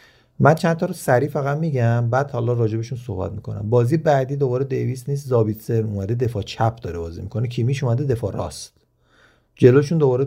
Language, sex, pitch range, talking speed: Persian, male, 115-145 Hz, 175 wpm